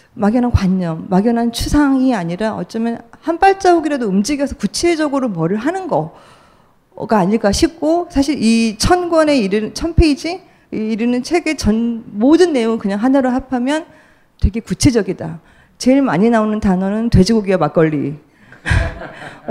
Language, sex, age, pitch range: Korean, female, 40-59, 200-265 Hz